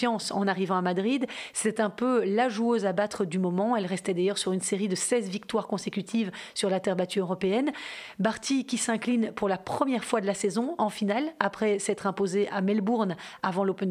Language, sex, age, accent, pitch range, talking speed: French, female, 40-59, French, 200-245 Hz, 205 wpm